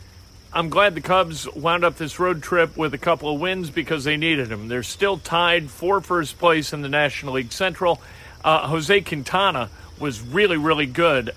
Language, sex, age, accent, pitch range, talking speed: English, male, 40-59, American, 130-170 Hz, 190 wpm